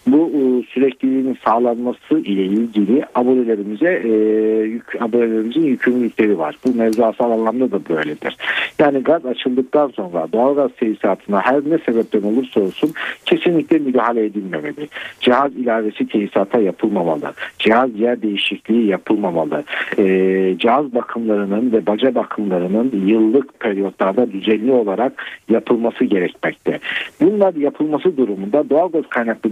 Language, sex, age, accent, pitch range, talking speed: Turkish, male, 60-79, native, 110-140 Hz, 110 wpm